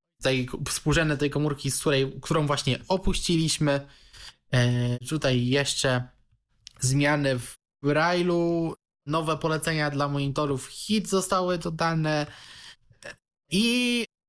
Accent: native